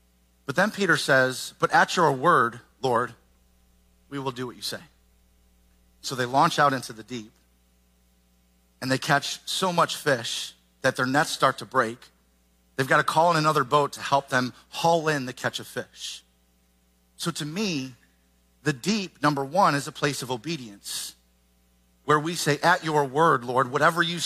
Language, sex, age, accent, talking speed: English, male, 40-59, American, 175 wpm